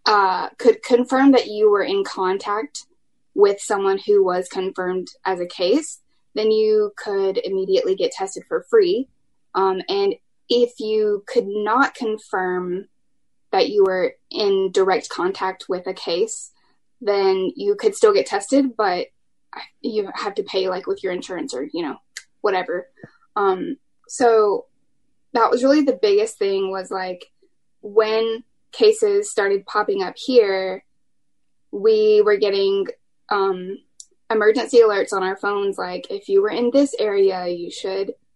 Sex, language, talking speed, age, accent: female, English, 145 wpm, 10-29, American